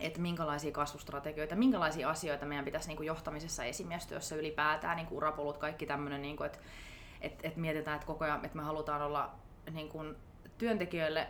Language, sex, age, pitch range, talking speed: Finnish, female, 30-49, 150-165 Hz, 155 wpm